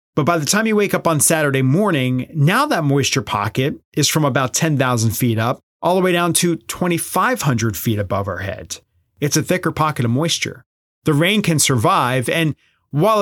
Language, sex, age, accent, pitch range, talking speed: English, male, 30-49, American, 125-160 Hz, 190 wpm